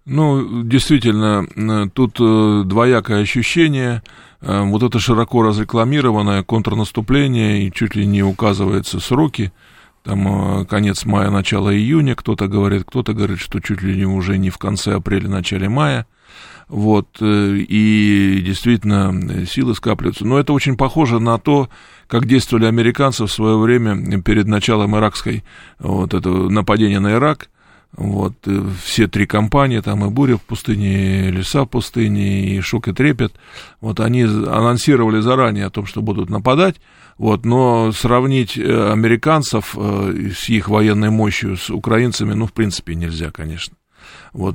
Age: 20-39